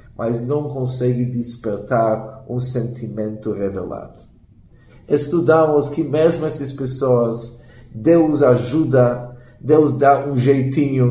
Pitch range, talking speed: 120-150 Hz, 95 wpm